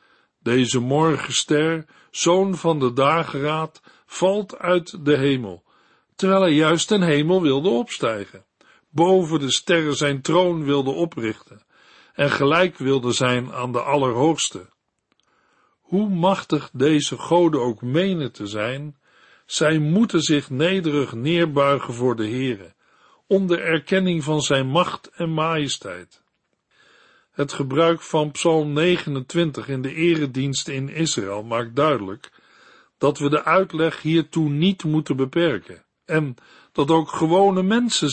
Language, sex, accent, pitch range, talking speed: Dutch, male, Dutch, 135-170 Hz, 125 wpm